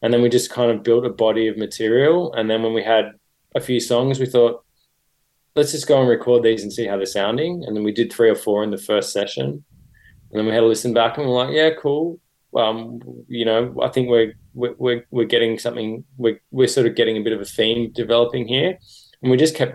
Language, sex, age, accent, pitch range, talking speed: English, male, 20-39, Australian, 105-120 Hz, 245 wpm